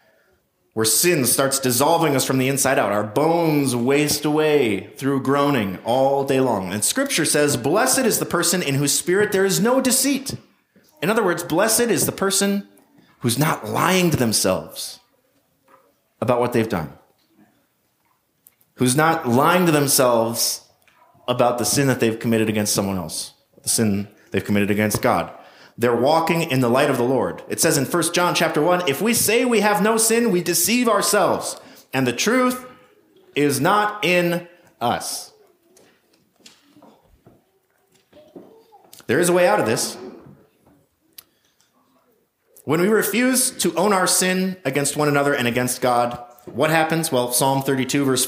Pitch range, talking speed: 125-195 Hz, 155 wpm